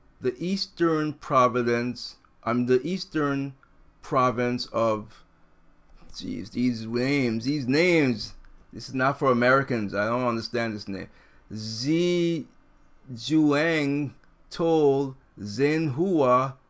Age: 30-49